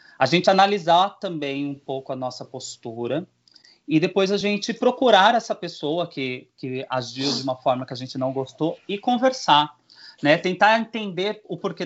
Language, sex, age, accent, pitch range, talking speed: Portuguese, male, 30-49, Brazilian, 150-195 Hz, 170 wpm